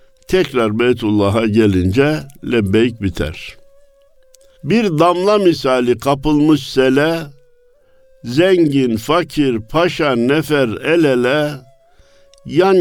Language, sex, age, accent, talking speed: Turkish, male, 60-79, native, 80 wpm